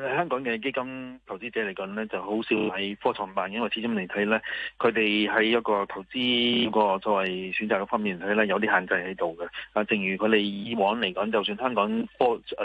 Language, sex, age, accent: Chinese, male, 20-39, native